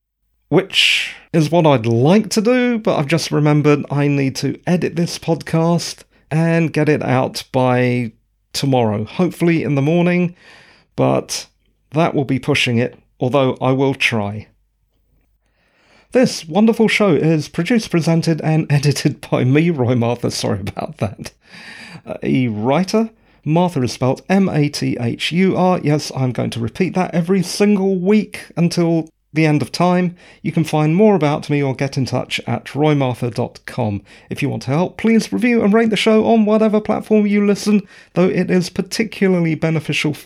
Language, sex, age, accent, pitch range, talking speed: English, male, 40-59, British, 130-185 Hz, 155 wpm